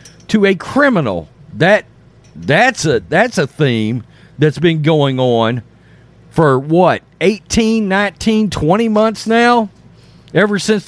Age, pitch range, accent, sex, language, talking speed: 40-59, 155-220 Hz, American, male, English, 120 wpm